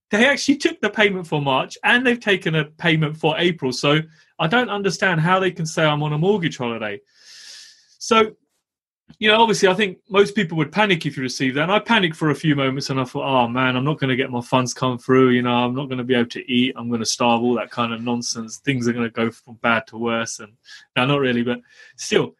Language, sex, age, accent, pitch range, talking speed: English, male, 30-49, British, 125-175 Hz, 255 wpm